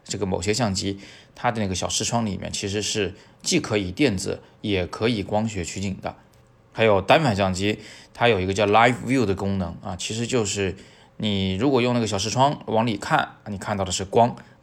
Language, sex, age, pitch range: Chinese, male, 20-39, 95-120 Hz